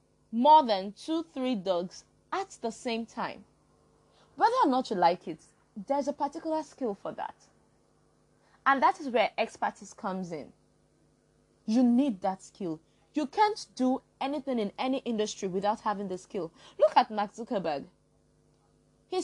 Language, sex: English, female